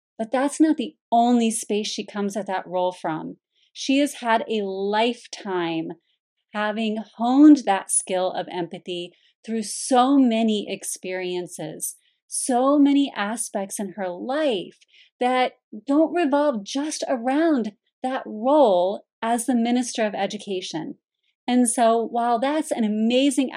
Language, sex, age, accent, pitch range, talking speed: English, female, 30-49, American, 185-240 Hz, 130 wpm